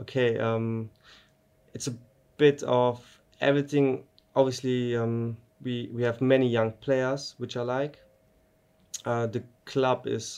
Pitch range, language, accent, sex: 110-130 Hz, English, German, male